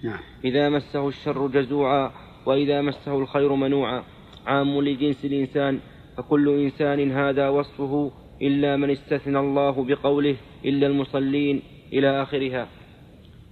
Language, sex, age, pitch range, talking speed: Arabic, male, 30-49, 140-145 Hz, 105 wpm